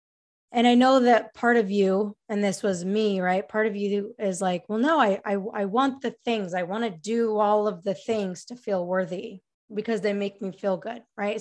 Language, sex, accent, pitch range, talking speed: English, female, American, 195-245 Hz, 225 wpm